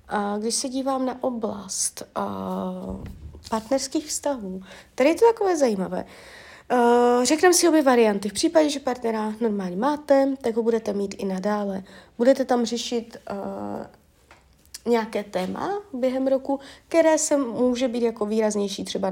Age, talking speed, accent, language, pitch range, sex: 30-49, 130 wpm, native, Czech, 200-240 Hz, female